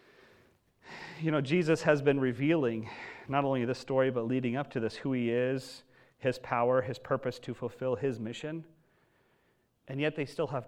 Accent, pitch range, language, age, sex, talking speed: American, 125-160 Hz, English, 40-59, male, 175 wpm